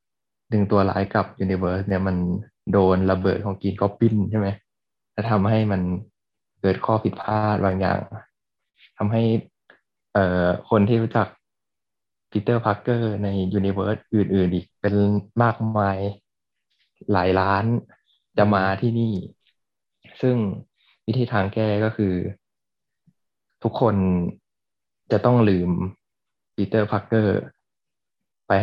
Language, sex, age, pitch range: Thai, male, 20-39, 95-110 Hz